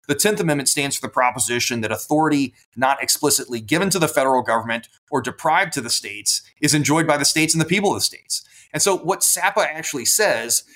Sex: male